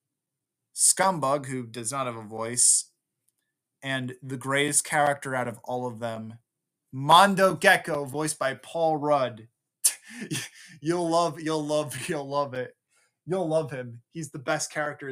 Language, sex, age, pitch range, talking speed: English, male, 20-39, 130-170 Hz, 145 wpm